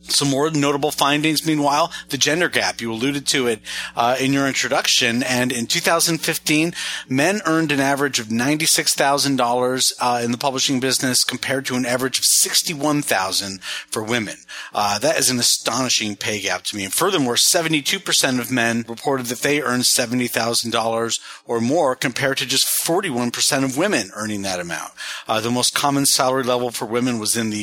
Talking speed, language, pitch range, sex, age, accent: 170 wpm, English, 115-150 Hz, male, 40-59, American